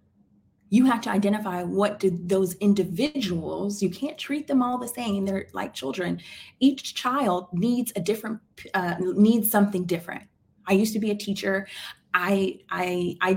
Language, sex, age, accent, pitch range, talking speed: English, female, 30-49, American, 190-225 Hz, 160 wpm